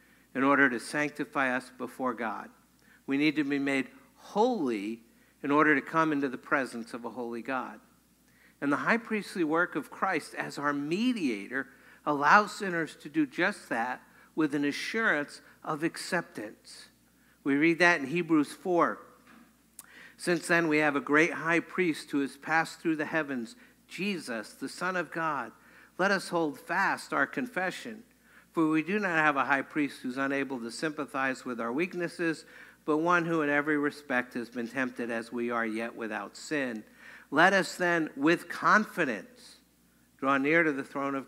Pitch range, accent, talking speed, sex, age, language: 125-160 Hz, American, 170 wpm, male, 60-79, English